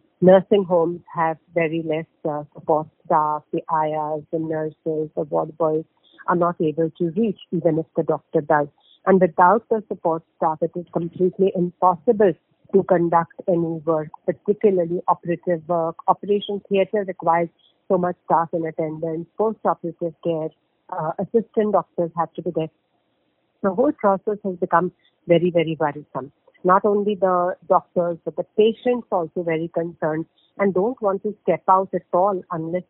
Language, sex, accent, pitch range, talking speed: English, female, Indian, 160-190 Hz, 155 wpm